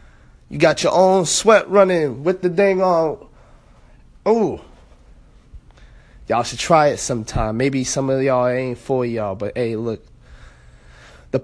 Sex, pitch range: male, 130-190 Hz